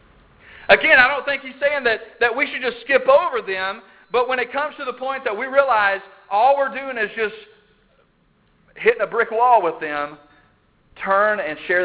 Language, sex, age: English, male, 40-59